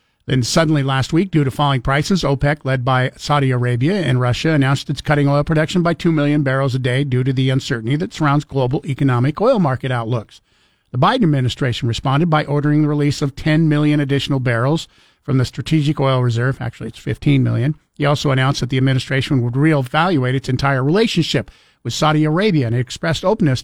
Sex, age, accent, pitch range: male, 50-69, American, 135-165 Hz